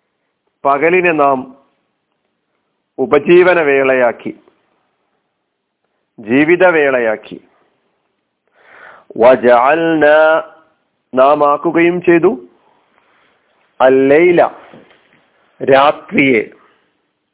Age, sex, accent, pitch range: 40-59, male, native, 125-165 Hz